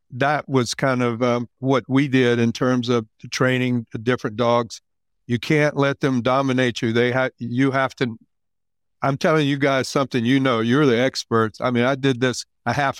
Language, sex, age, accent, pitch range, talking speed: English, male, 60-79, American, 115-135 Hz, 200 wpm